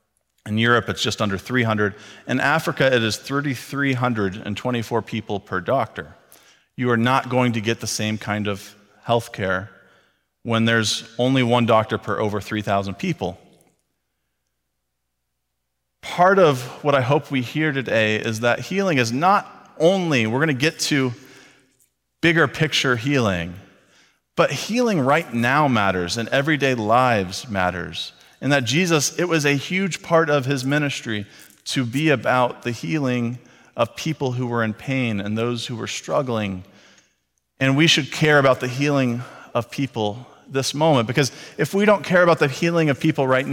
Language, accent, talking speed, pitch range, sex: English, American, 160 wpm, 110-145 Hz, male